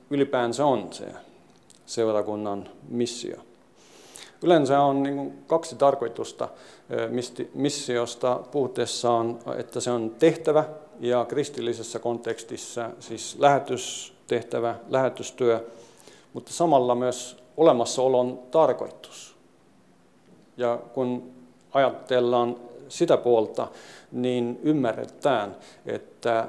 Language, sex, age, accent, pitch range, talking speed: Finnish, male, 50-69, native, 115-130 Hz, 80 wpm